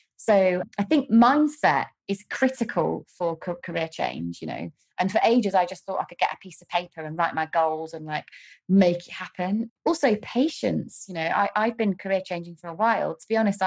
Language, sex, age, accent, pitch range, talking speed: English, female, 20-39, British, 165-205 Hz, 205 wpm